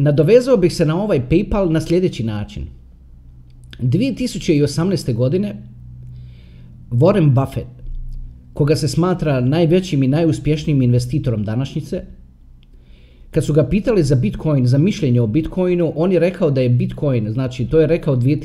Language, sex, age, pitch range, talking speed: Croatian, male, 30-49, 115-165 Hz, 135 wpm